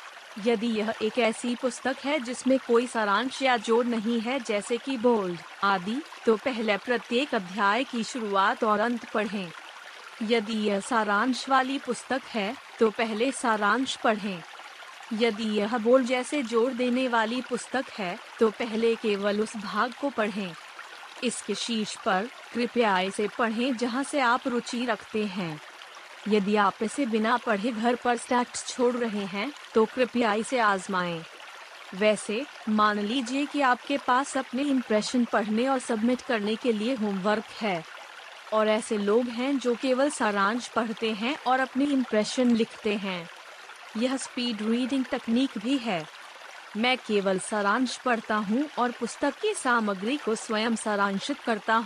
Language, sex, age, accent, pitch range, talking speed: Hindi, female, 30-49, native, 215-255 Hz, 145 wpm